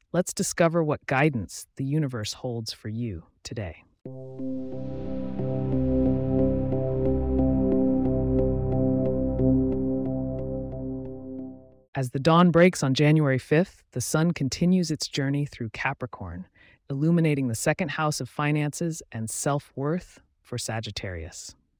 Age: 30-49